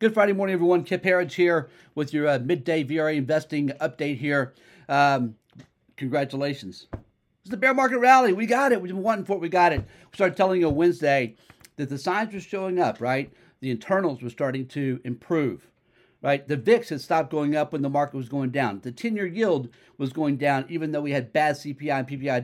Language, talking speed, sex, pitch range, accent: English, 210 wpm, male, 135-180 Hz, American